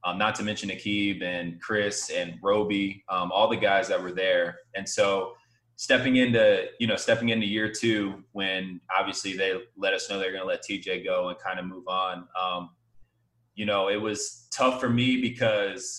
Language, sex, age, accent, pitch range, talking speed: English, male, 20-39, American, 95-115 Hz, 195 wpm